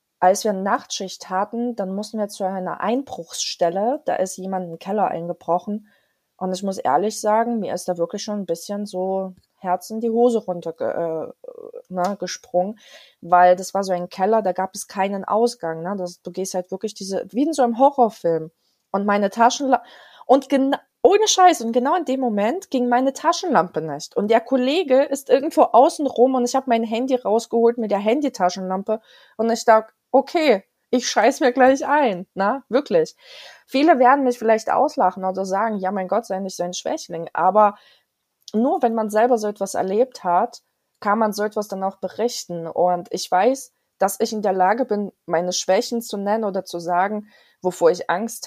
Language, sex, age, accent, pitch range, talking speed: German, female, 20-39, German, 185-245 Hz, 190 wpm